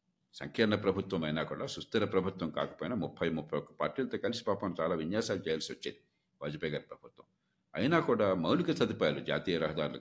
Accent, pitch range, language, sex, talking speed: native, 95-145 Hz, Telugu, male, 155 wpm